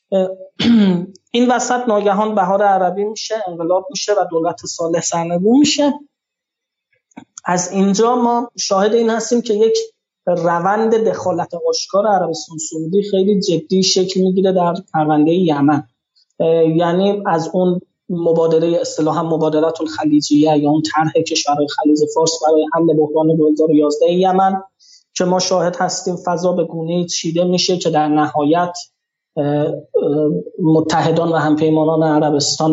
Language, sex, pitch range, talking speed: Persian, male, 160-190 Hz, 120 wpm